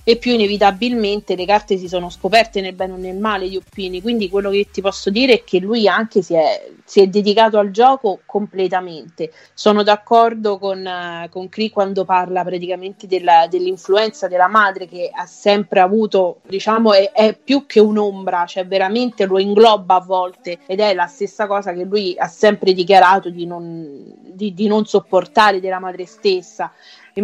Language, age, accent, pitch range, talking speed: Italian, 30-49, native, 185-215 Hz, 175 wpm